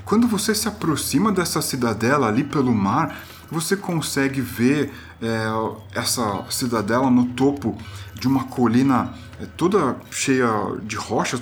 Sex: male